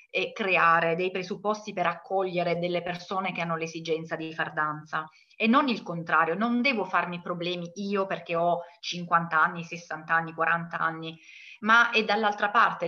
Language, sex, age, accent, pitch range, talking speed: Italian, female, 30-49, native, 160-200 Hz, 165 wpm